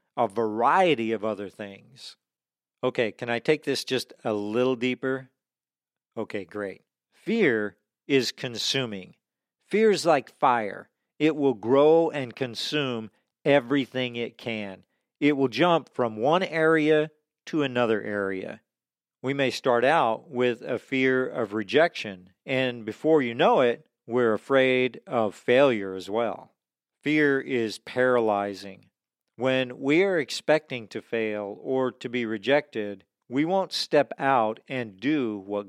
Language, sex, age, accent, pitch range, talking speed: English, male, 50-69, American, 110-140 Hz, 135 wpm